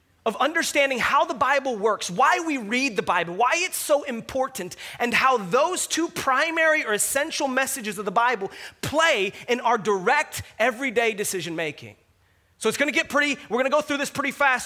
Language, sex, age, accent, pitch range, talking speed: English, male, 30-49, American, 235-315 Hz, 180 wpm